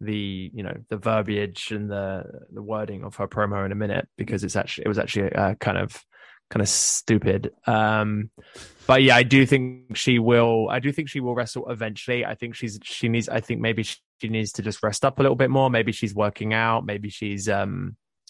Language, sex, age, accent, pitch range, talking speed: English, male, 20-39, British, 110-125 Hz, 220 wpm